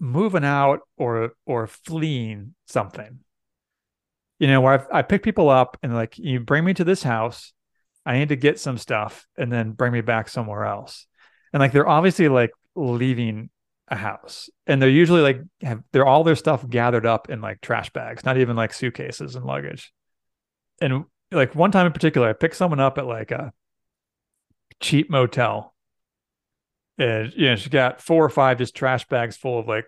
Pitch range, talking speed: 115-150 Hz, 185 wpm